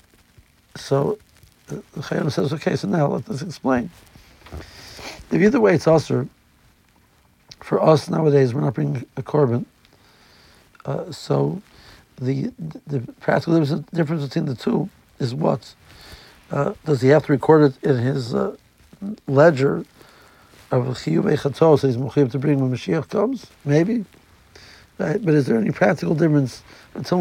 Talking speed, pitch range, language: 145 wpm, 125-165 Hz, English